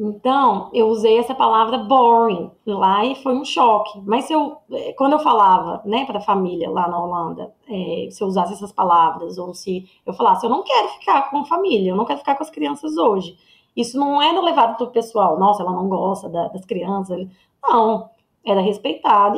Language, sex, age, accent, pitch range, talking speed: Portuguese, female, 20-39, Brazilian, 190-240 Hz, 205 wpm